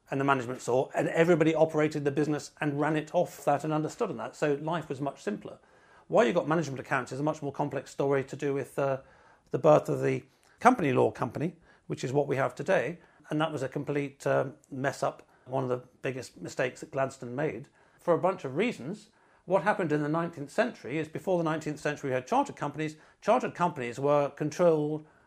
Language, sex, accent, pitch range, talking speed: English, male, British, 140-170 Hz, 210 wpm